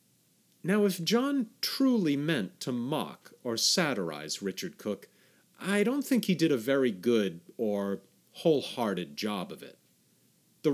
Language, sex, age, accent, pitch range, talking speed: English, male, 40-59, American, 130-200 Hz, 140 wpm